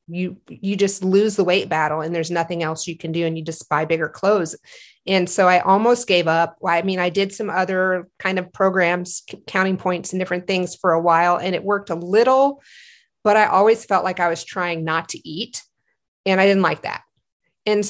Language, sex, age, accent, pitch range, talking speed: English, female, 30-49, American, 180-220 Hz, 220 wpm